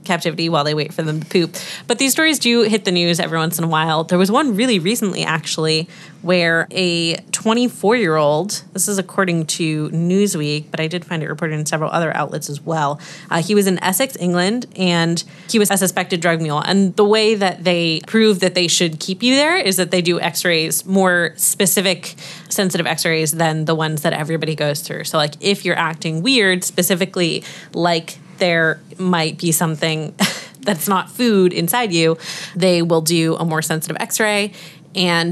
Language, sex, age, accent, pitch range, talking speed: English, female, 20-39, American, 160-185 Hz, 195 wpm